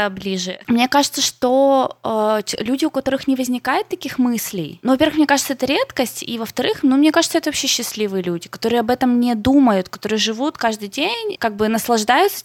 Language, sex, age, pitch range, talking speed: Russian, female, 20-39, 205-270 Hz, 190 wpm